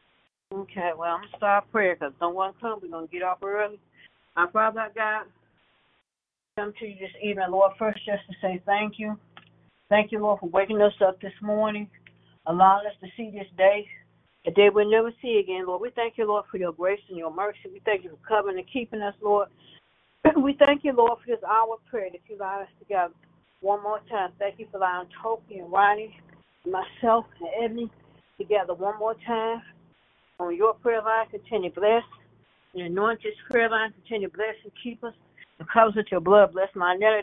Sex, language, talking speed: female, English, 210 wpm